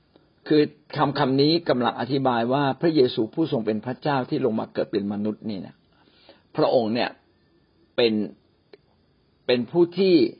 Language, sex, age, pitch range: Thai, male, 60-79, 110-150 Hz